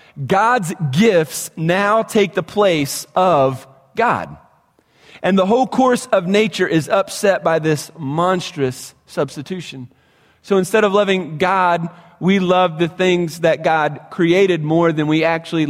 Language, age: English, 30-49